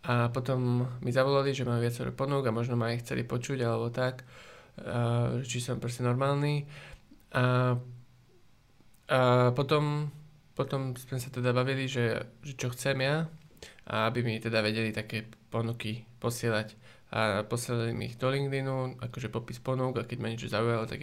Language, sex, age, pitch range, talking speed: Slovak, male, 20-39, 115-135 Hz, 160 wpm